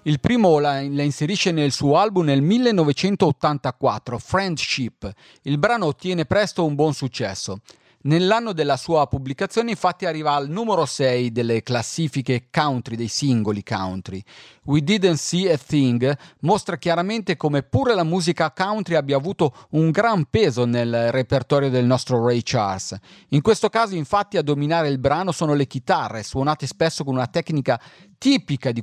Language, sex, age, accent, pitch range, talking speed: Italian, male, 40-59, native, 130-180 Hz, 150 wpm